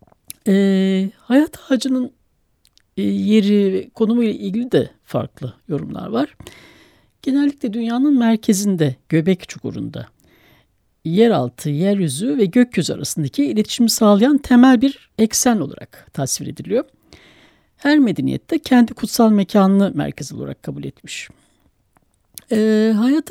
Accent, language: native, Turkish